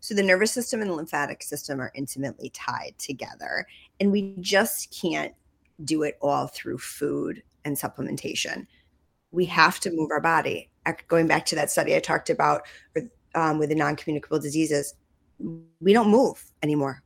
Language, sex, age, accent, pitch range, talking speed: English, female, 30-49, American, 150-210 Hz, 165 wpm